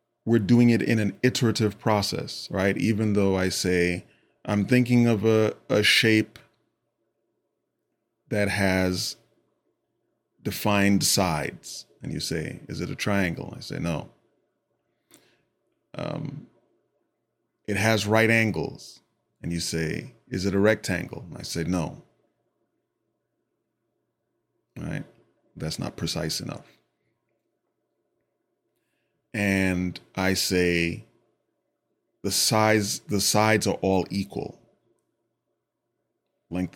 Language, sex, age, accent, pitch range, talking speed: English, male, 30-49, American, 95-115 Hz, 105 wpm